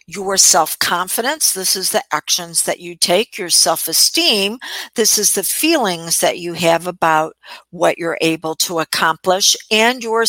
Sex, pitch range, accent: female, 180-235 Hz, American